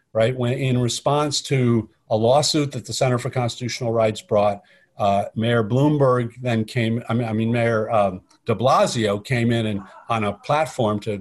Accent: American